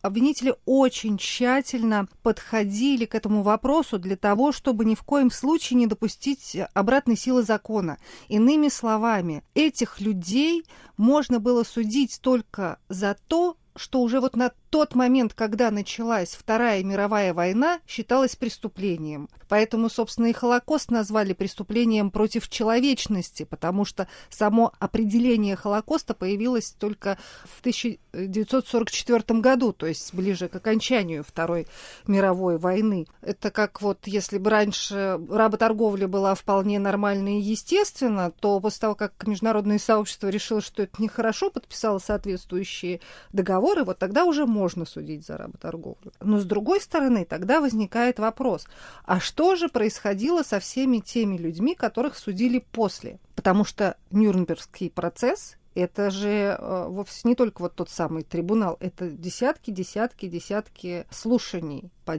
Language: Russian